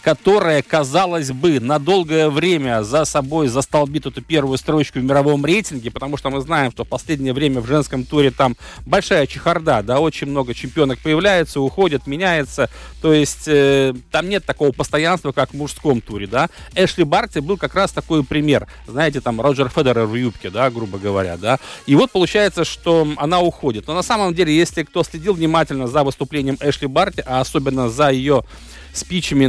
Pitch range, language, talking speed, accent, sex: 135-165 Hz, Russian, 180 wpm, native, male